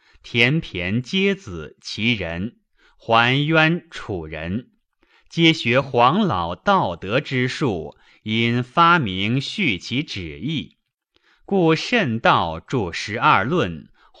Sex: male